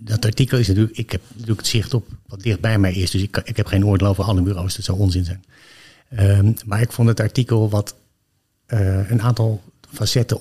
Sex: male